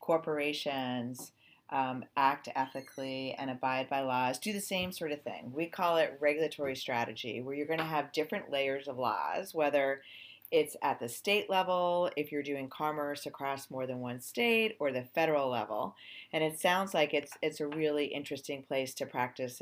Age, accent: 40-59, American